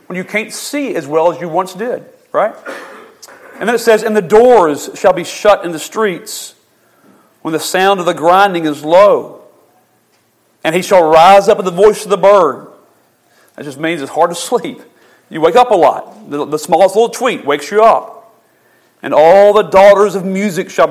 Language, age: English, 40-59